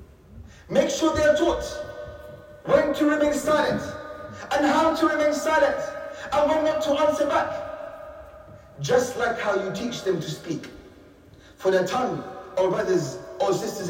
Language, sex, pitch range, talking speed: English, male, 250-290 Hz, 150 wpm